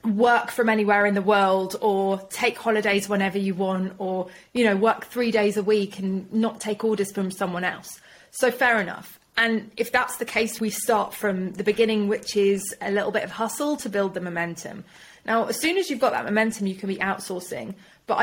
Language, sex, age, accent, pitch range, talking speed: English, female, 30-49, British, 205-260 Hz, 210 wpm